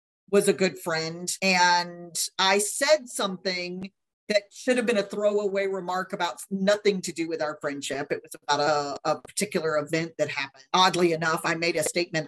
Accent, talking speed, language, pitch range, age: American, 180 wpm, English, 165-205 Hz, 40-59